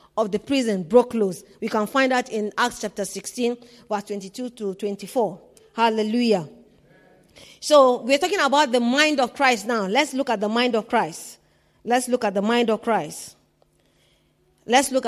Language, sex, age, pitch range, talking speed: English, female, 40-59, 225-295 Hz, 170 wpm